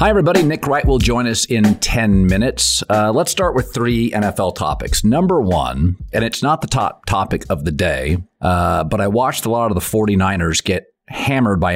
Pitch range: 90-115 Hz